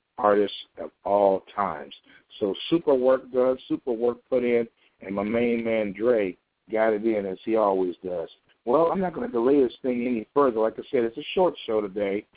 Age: 60-79